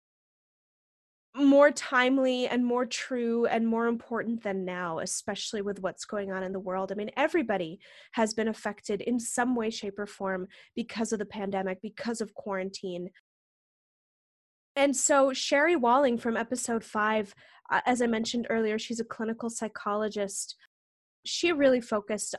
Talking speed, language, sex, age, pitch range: 150 wpm, English, female, 20-39, 205-260 Hz